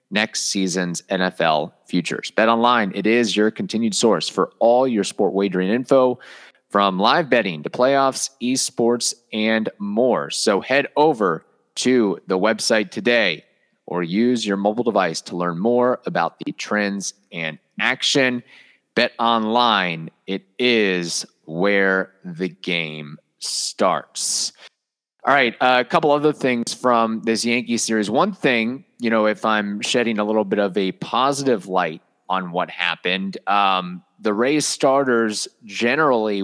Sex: male